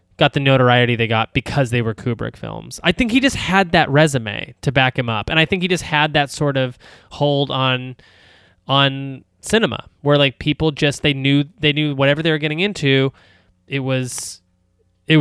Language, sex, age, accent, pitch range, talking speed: English, male, 20-39, American, 125-175 Hz, 195 wpm